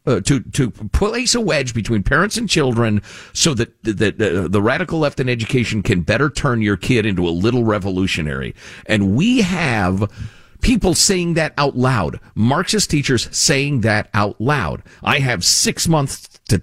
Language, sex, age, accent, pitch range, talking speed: English, male, 50-69, American, 95-140 Hz, 170 wpm